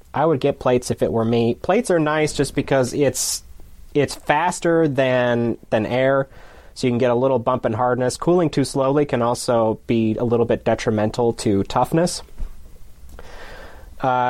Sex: male